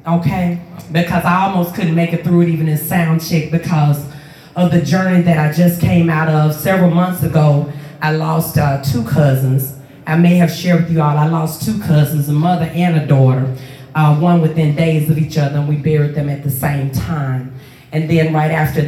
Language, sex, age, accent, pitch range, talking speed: English, female, 40-59, American, 145-175 Hz, 210 wpm